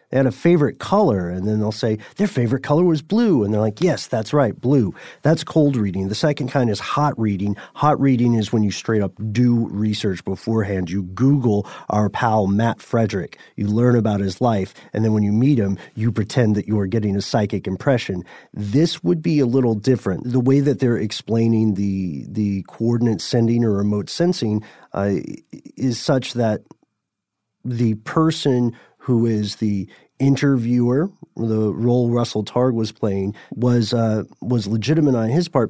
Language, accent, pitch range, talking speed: English, American, 105-125 Hz, 180 wpm